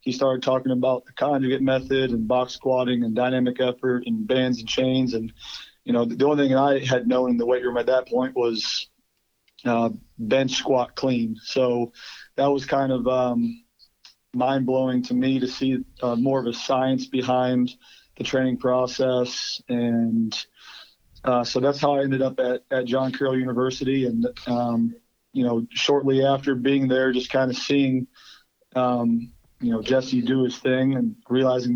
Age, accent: 40-59, American